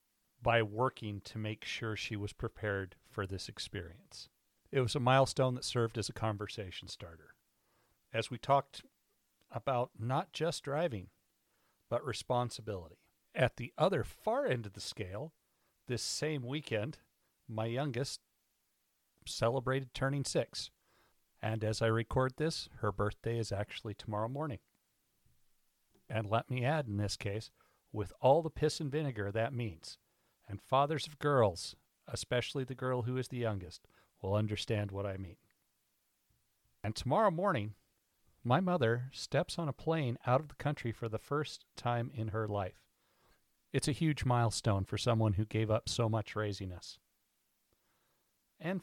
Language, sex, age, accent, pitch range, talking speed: English, male, 50-69, American, 105-130 Hz, 150 wpm